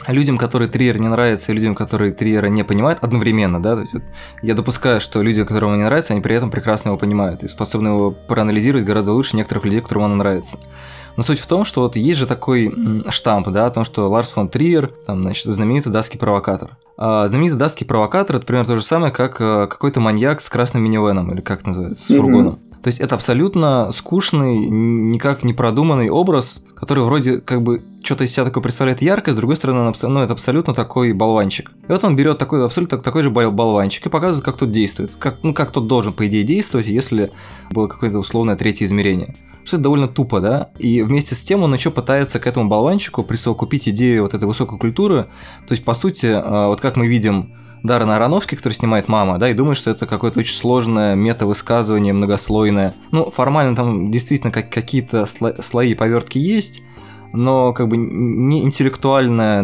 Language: Russian